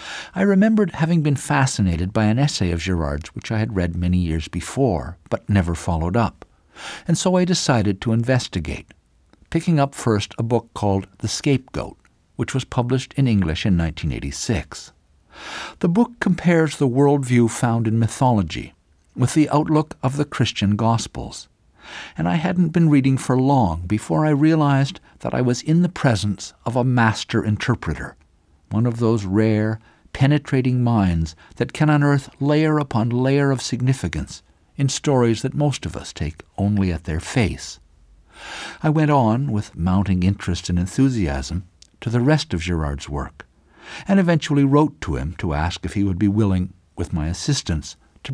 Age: 60-79